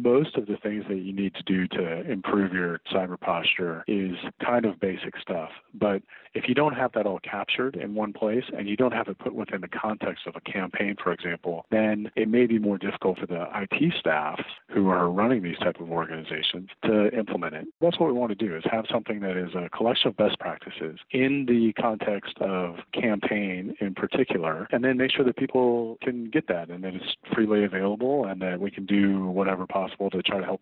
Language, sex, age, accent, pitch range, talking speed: English, male, 40-59, American, 95-110 Hz, 220 wpm